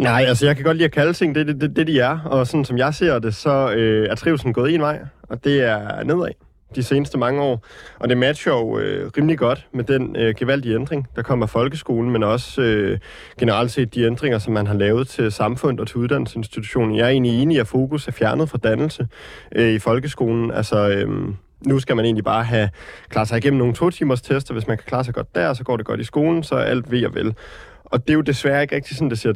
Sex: male